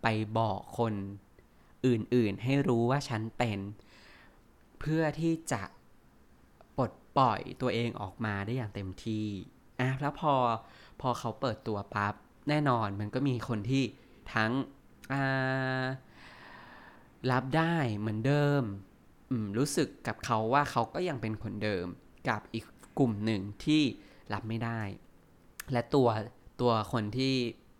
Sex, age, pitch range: male, 20-39, 105-135 Hz